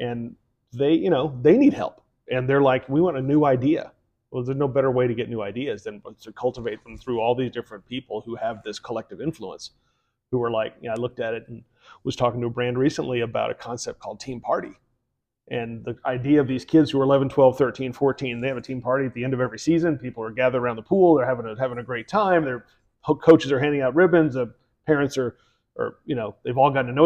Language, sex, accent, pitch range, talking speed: English, male, American, 125-160 Hz, 250 wpm